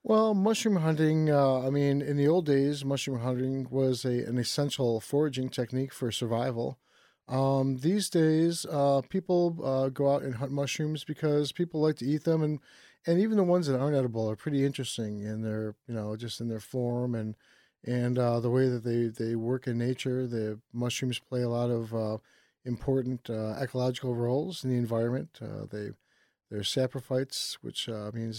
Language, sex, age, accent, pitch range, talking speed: English, male, 40-59, American, 120-140 Hz, 185 wpm